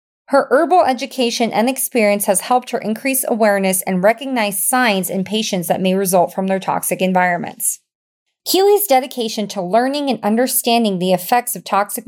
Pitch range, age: 190-255 Hz, 30-49